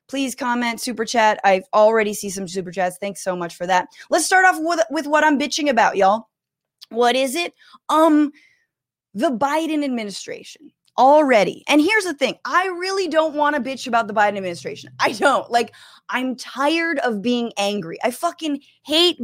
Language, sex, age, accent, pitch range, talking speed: English, female, 20-39, American, 185-275 Hz, 180 wpm